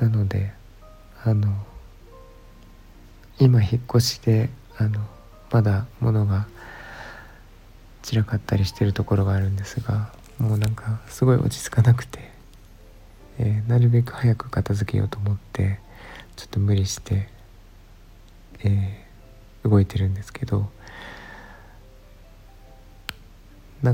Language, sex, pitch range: Japanese, male, 100-115 Hz